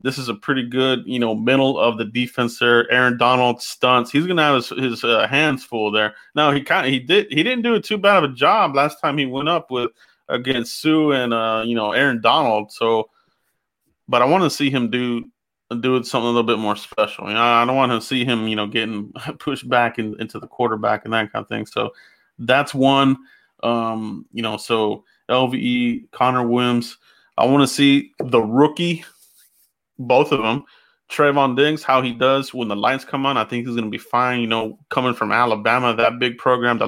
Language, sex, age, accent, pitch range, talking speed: English, male, 30-49, American, 120-140 Hz, 220 wpm